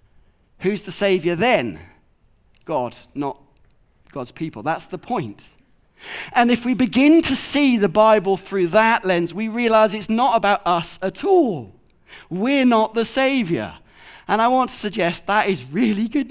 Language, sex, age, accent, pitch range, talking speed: English, male, 40-59, British, 170-240 Hz, 160 wpm